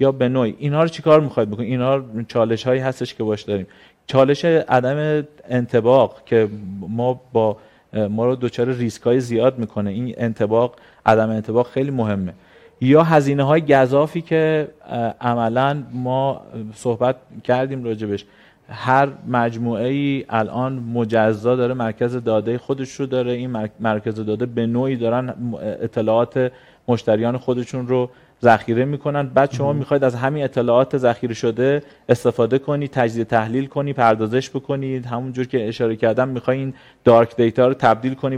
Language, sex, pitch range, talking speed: Persian, male, 115-135 Hz, 145 wpm